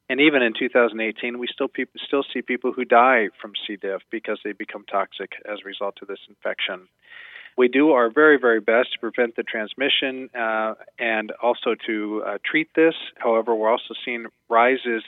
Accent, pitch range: American, 110-130 Hz